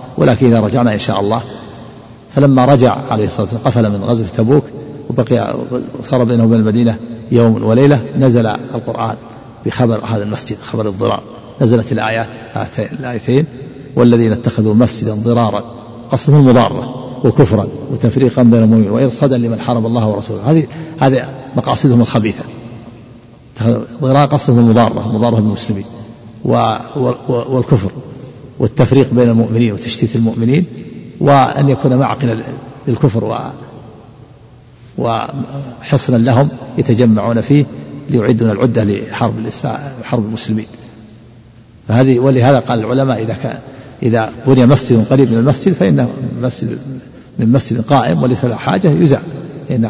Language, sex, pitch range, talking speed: Arabic, male, 115-135 Hz, 120 wpm